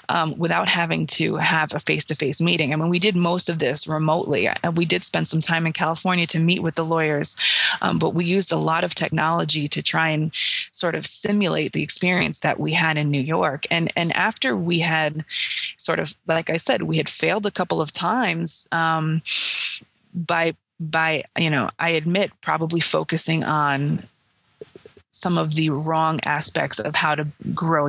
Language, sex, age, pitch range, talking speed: English, female, 20-39, 155-175 Hz, 185 wpm